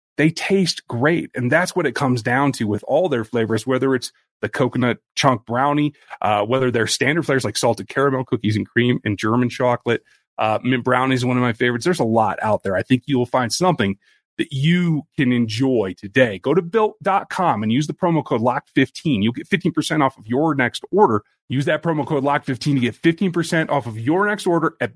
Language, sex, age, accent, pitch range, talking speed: English, male, 30-49, American, 120-170 Hz, 210 wpm